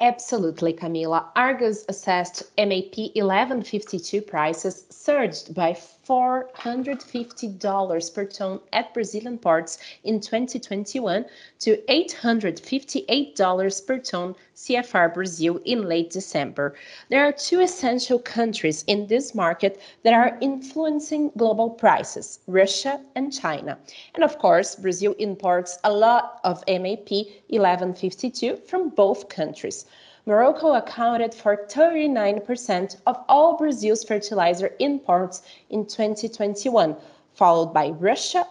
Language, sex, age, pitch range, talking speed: English, female, 30-49, 185-250 Hz, 110 wpm